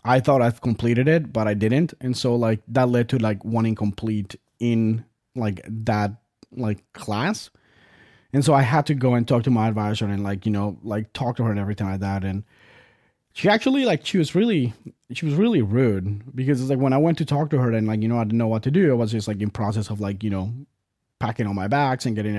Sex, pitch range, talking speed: male, 105-130 Hz, 245 wpm